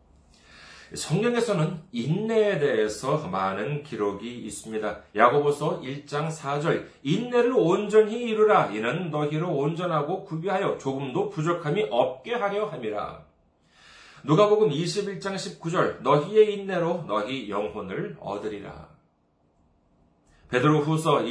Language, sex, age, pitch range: Korean, male, 40-59, 140-210 Hz